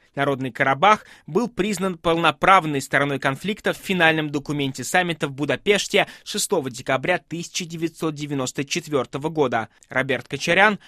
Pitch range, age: 140-190 Hz, 20-39